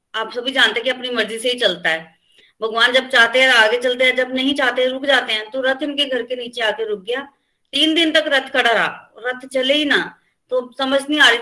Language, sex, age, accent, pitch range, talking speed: Hindi, female, 30-49, native, 225-275 Hz, 255 wpm